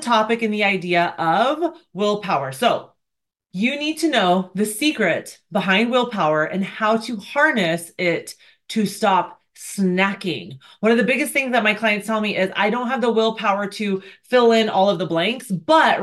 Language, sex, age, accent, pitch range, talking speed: English, female, 30-49, American, 190-235 Hz, 175 wpm